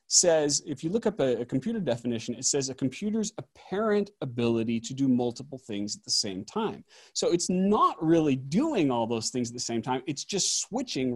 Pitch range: 130-200 Hz